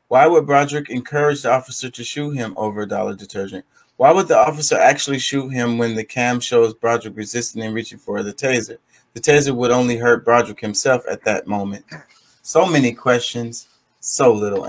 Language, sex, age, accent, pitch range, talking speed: English, male, 30-49, American, 110-135 Hz, 190 wpm